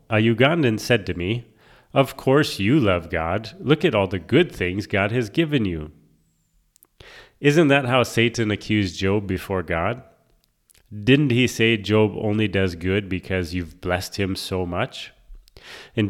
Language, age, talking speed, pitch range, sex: English, 30-49, 155 wpm, 95-125 Hz, male